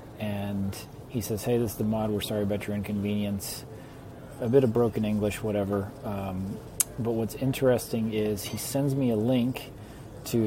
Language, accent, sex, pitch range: English, American, male, 105-125 Hz